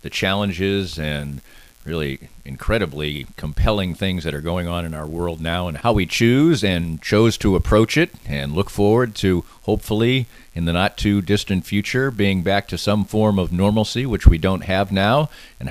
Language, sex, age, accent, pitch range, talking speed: English, male, 50-69, American, 80-100 Hz, 185 wpm